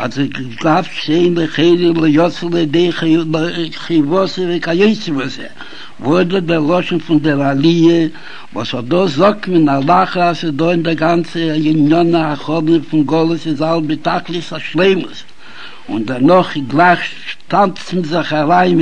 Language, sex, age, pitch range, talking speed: Hebrew, male, 60-79, 155-180 Hz, 100 wpm